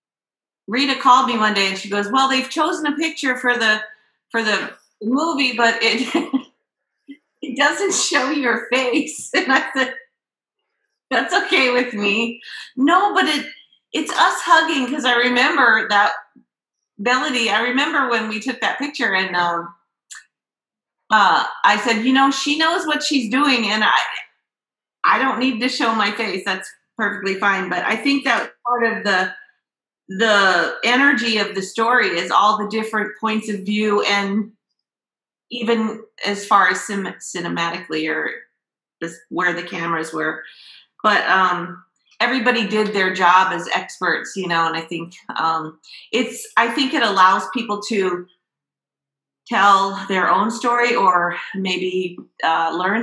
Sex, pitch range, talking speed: female, 190-260 Hz, 155 wpm